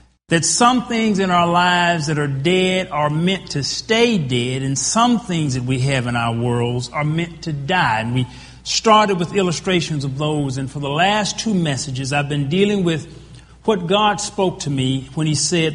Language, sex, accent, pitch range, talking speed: English, male, American, 135-185 Hz, 200 wpm